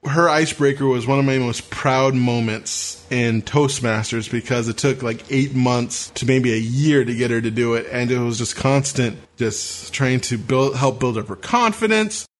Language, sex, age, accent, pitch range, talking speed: English, male, 20-39, American, 120-140 Hz, 195 wpm